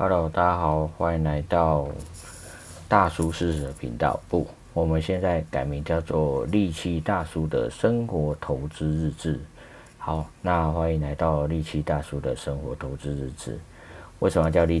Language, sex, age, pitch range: Chinese, male, 50-69, 75-85 Hz